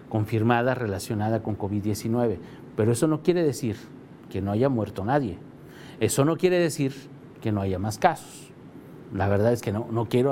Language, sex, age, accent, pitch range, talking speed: Spanish, male, 50-69, Mexican, 110-145 Hz, 175 wpm